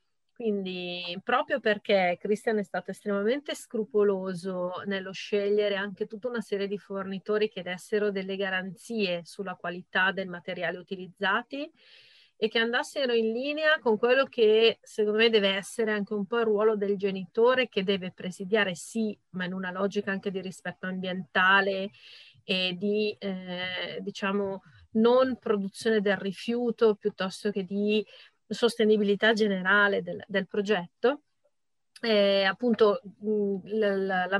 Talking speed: 135 wpm